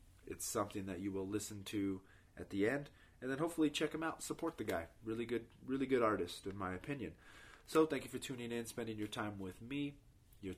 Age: 30-49